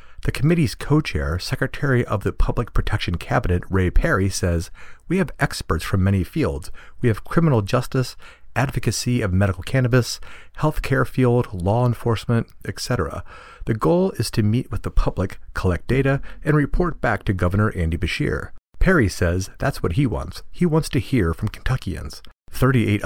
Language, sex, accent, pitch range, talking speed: English, male, American, 90-125 Hz, 160 wpm